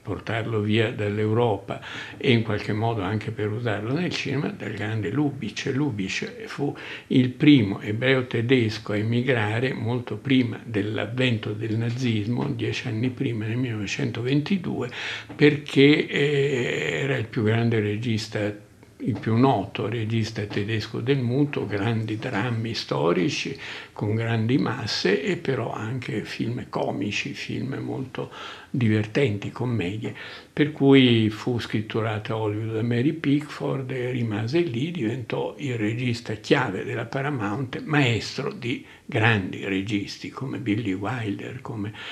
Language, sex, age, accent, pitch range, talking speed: Italian, male, 60-79, native, 105-135 Hz, 125 wpm